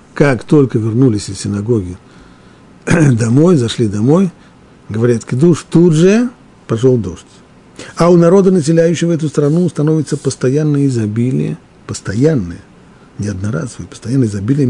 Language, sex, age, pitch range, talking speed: Russian, male, 50-69, 120-175 Hz, 115 wpm